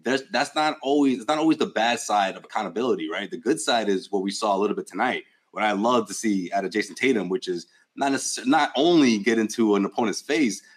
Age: 30-49